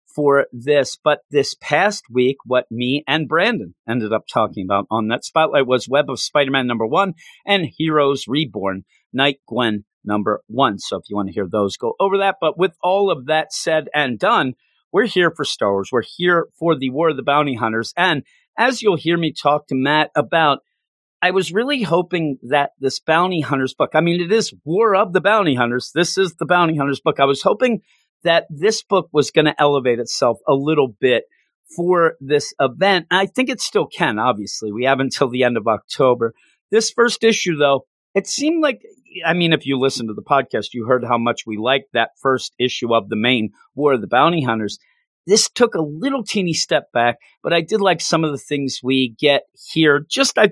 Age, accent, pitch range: 40-59, American, 125-175 Hz